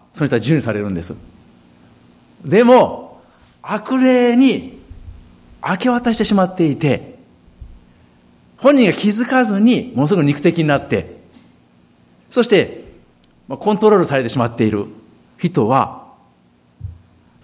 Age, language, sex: 50-69, Japanese, male